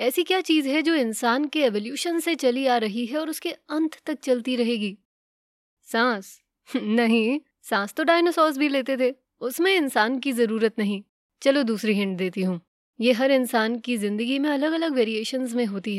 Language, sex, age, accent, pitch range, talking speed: English, female, 20-39, Indian, 215-285 Hz, 175 wpm